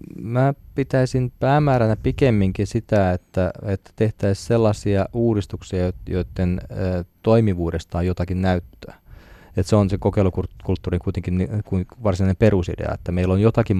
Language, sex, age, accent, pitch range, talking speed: Finnish, male, 20-39, native, 85-105 Hz, 115 wpm